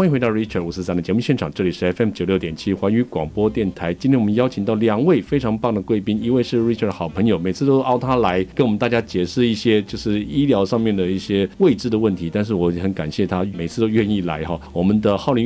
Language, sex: Chinese, male